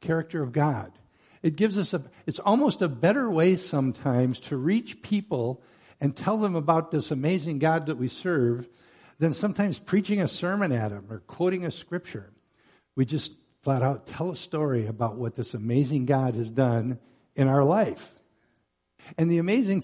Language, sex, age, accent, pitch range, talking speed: English, male, 60-79, American, 120-185 Hz, 170 wpm